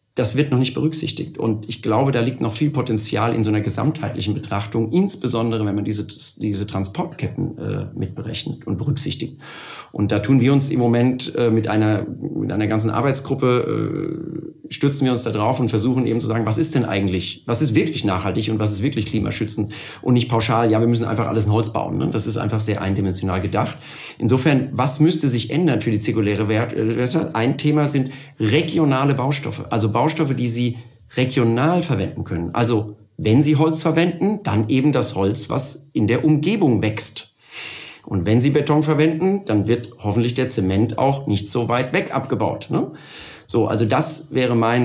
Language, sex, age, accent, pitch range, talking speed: German, male, 40-59, German, 110-145 Hz, 185 wpm